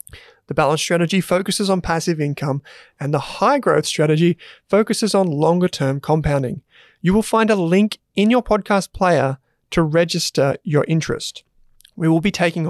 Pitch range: 150-195 Hz